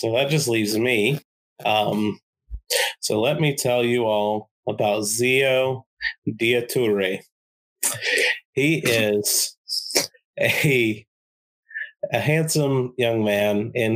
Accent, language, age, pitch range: American, English, 30-49, 105-120 Hz